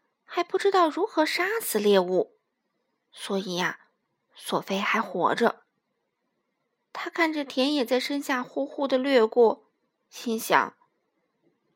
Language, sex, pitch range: Chinese, female, 220-340 Hz